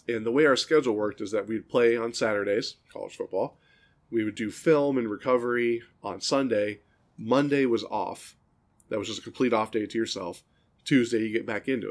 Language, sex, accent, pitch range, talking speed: English, male, American, 105-125 Hz, 195 wpm